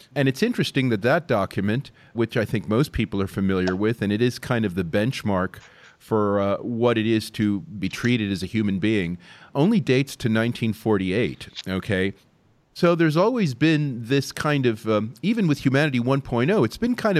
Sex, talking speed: male, 180 wpm